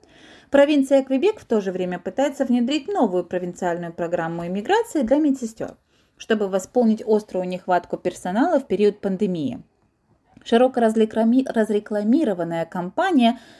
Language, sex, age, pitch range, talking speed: Russian, female, 30-49, 185-270 Hz, 110 wpm